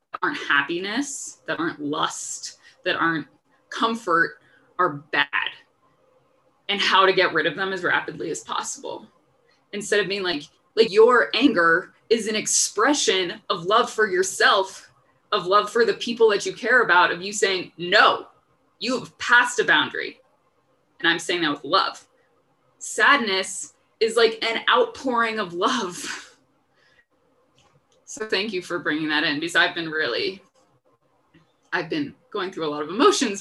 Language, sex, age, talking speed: English, female, 20-39, 150 wpm